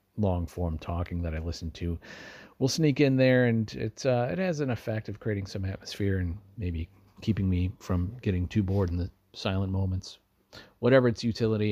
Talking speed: 190 wpm